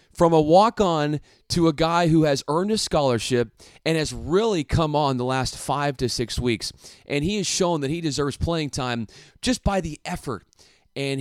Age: 30-49